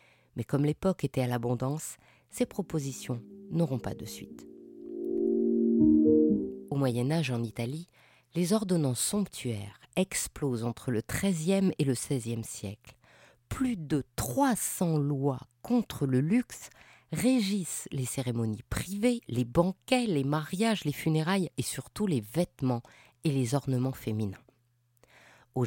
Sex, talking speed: female, 125 wpm